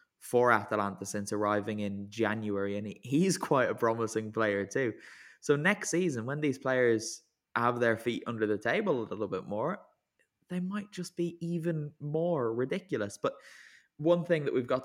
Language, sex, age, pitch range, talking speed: English, male, 10-29, 105-140 Hz, 170 wpm